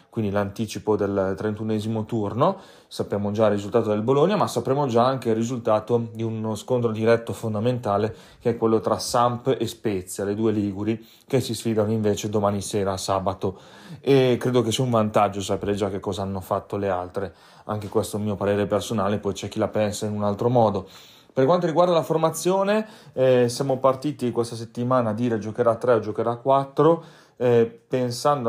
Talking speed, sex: 185 wpm, male